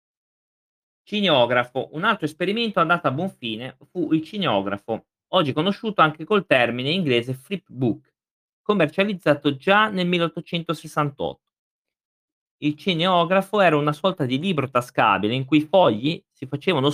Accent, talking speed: native, 130 wpm